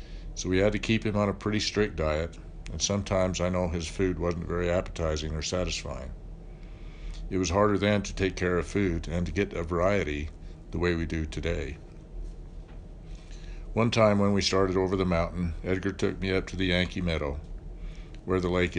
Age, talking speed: 60-79, 190 wpm